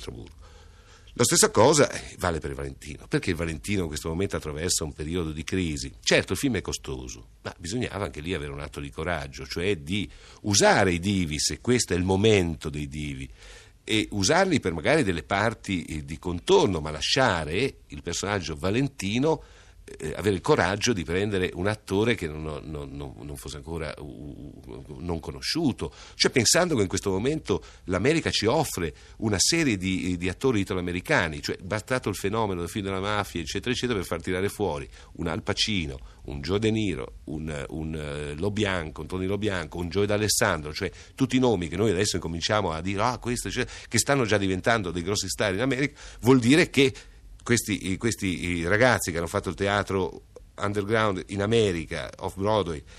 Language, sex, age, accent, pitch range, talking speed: Italian, male, 50-69, native, 80-105 Hz, 180 wpm